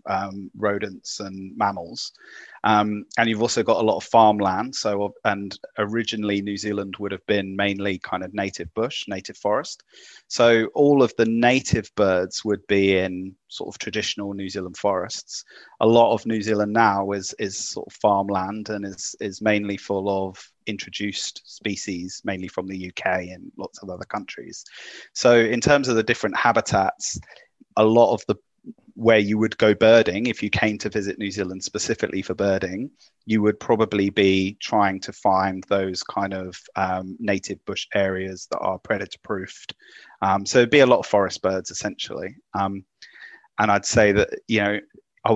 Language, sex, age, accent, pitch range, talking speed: English, male, 30-49, British, 95-110 Hz, 175 wpm